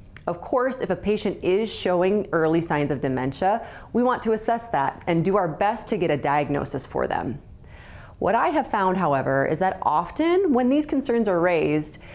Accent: American